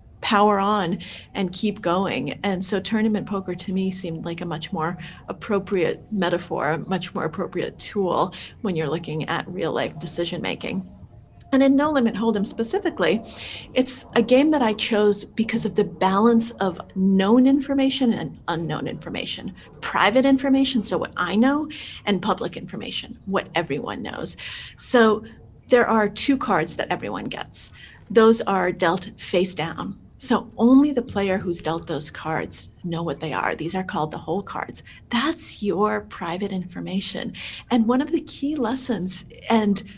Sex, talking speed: female, 160 wpm